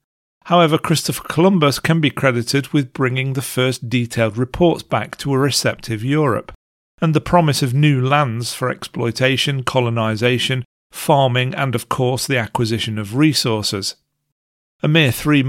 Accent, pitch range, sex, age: British, 120-145 Hz, male, 40-59